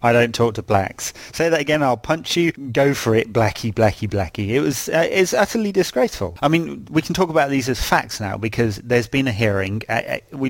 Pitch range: 110-125 Hz